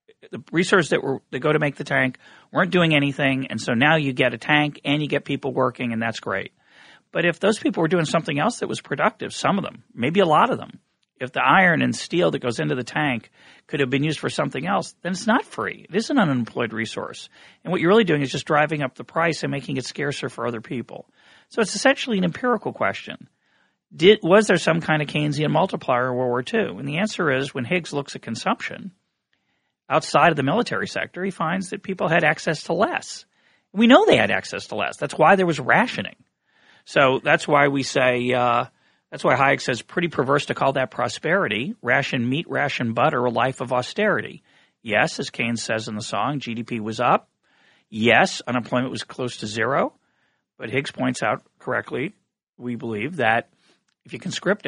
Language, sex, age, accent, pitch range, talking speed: English, male, 40-59, American, 125-170 Hz, 215 wpm